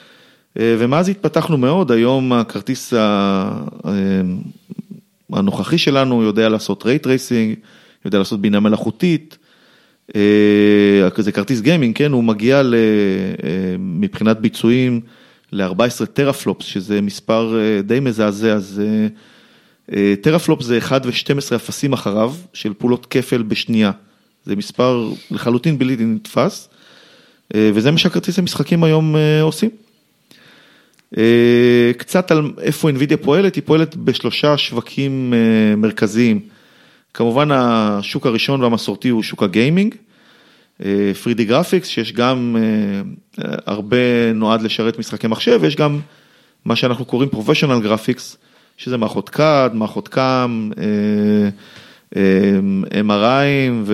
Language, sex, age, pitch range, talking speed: Hebrew, male, 30-49, 110-150 Hz, 100 wpm